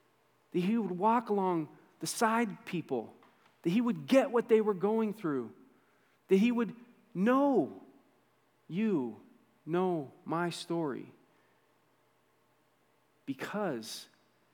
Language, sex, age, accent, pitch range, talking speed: English, male, 40-59, American, 125-175 Hz, 105 wpm